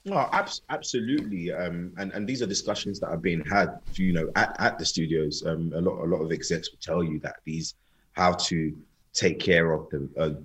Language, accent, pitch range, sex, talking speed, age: English, British, 75-85 Hz, male, 225 wpm, 20-39